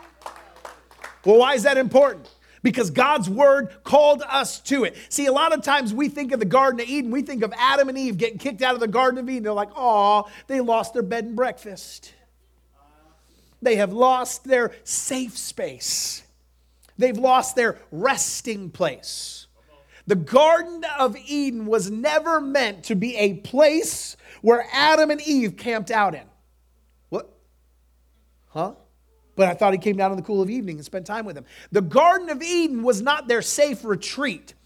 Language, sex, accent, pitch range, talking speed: English, male, American, 205-280 Hz, 180 wpm